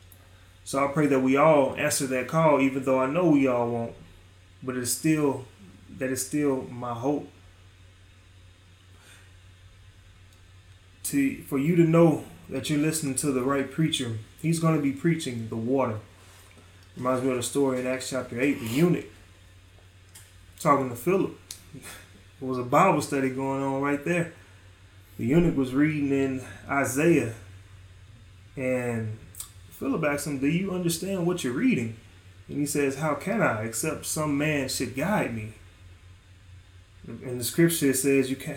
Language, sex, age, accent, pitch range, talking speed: English, male, 20-39, American, 100-150 Hz, 155 wpm